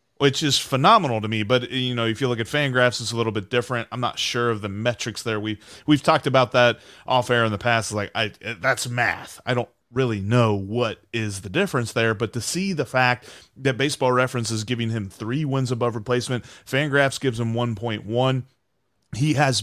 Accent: American